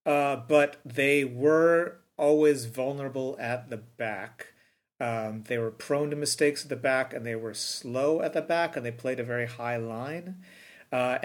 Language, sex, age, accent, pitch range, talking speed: English, male, 40-59, American, 115-140 Hz, 175 wpm